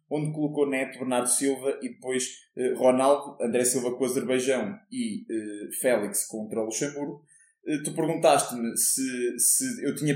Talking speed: 140 wpm